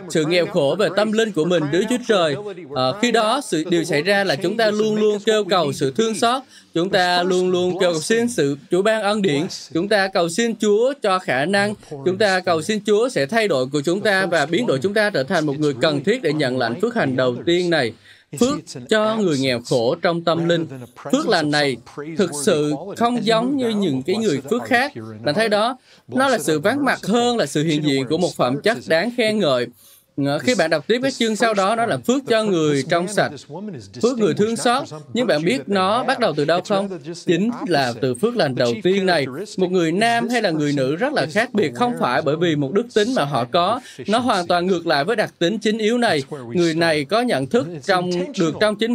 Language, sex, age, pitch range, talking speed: Vietnamese, male, 20-39, 155-220 Hz, 240 wpm